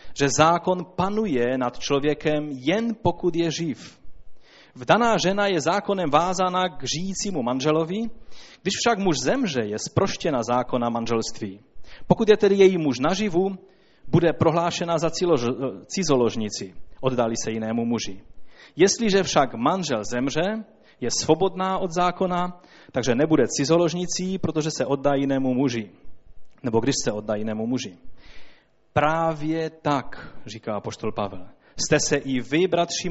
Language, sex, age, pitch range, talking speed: Czech, male, 30-49, 130-185 Hz, 130 wpm